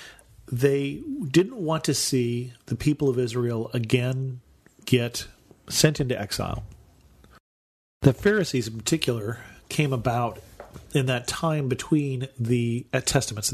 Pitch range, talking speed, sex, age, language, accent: 115-140 Hz, 115 wpm, male, 40-59, English, American